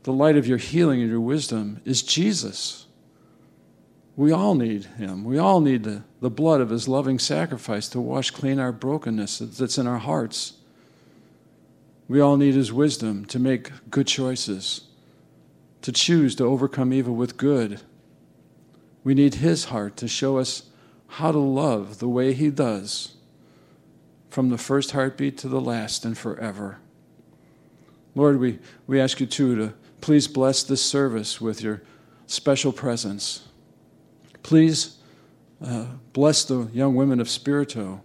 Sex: male